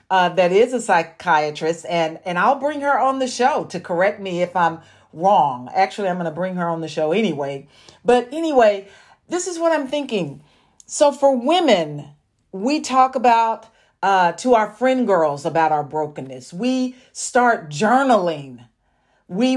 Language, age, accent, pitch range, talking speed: English, 40-59, American, 170-245 Hz, 165 wpm